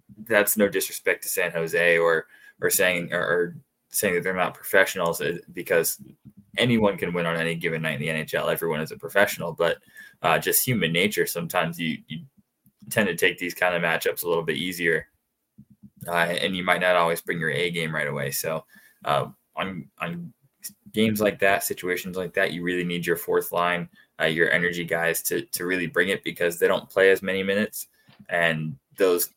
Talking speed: 195 wpm